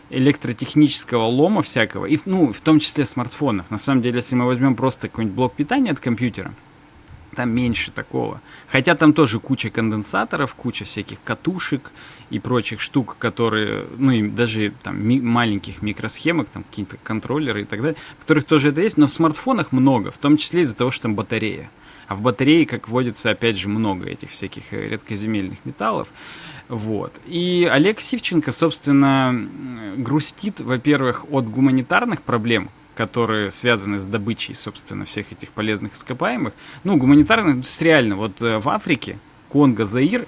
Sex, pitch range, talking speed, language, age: male, 110-145 Hz, 150 wpm, Russian, 20-39